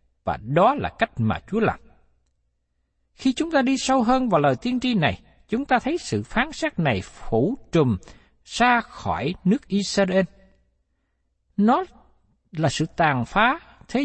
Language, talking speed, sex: Vietnamese, 160 wpm, male